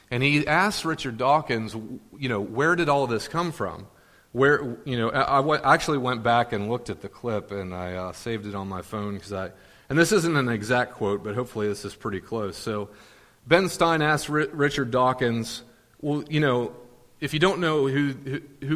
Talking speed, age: 205 wpm, 30-49